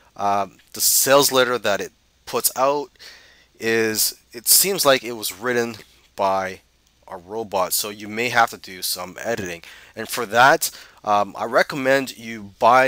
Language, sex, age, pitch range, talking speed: English, male, 20-39, 95-115 Hz, 160 wpm